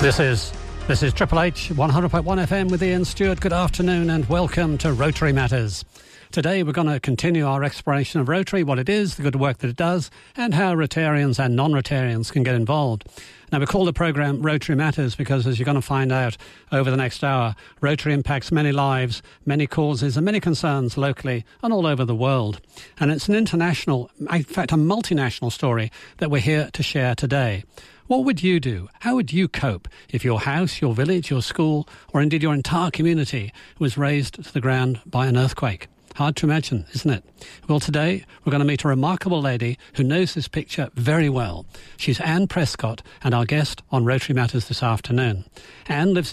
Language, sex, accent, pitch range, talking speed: English, male, British, 130-160 Hz, 200 wpm